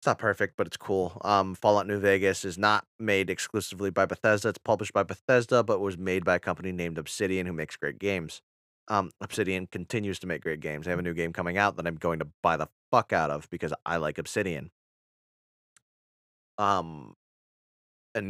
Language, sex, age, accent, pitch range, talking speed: English, male, 30-49, American, 85-105 Hz, 200 wpm